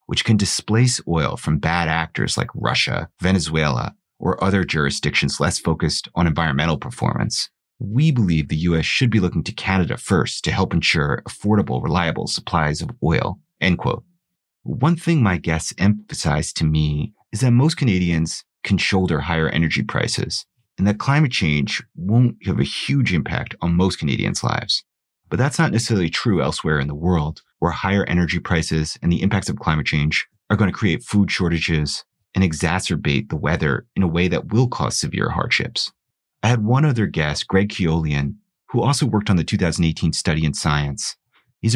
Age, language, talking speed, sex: 30-49, English, 175 wpm, male